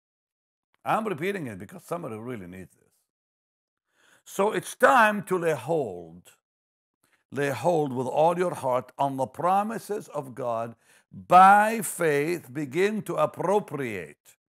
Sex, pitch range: male, 115-185 Hz